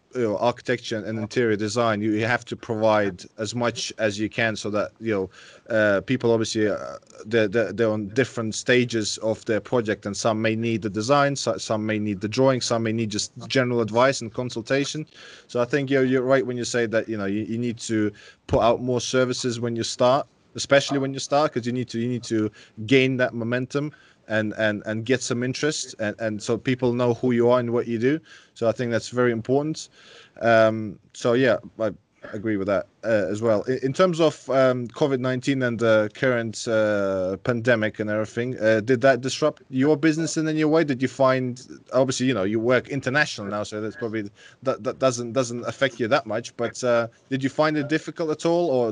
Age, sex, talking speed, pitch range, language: 20-39, male, 210 wpm, 110-130 Hz, English